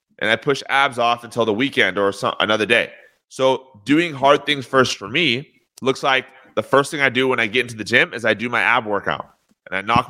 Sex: male